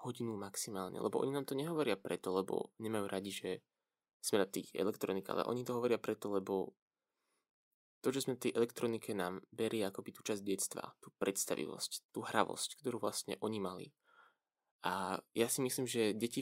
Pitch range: 95-115 Hz